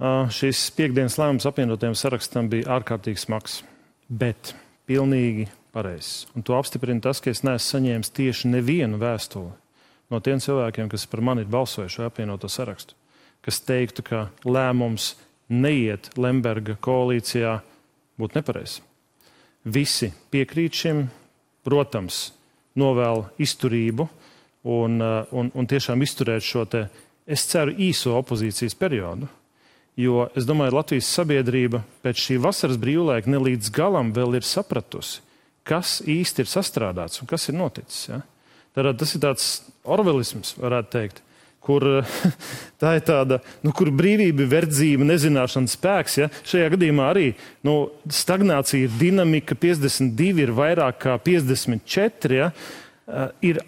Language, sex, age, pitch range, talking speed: English, male, 40-59, 120-155 Hz, 125 wpm